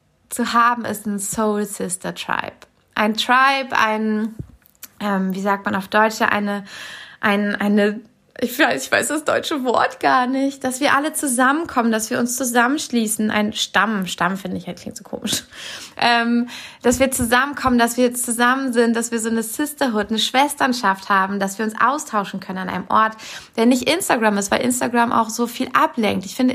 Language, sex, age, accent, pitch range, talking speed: German, female, 20-39, German, 210-260 Hz, 185 wpm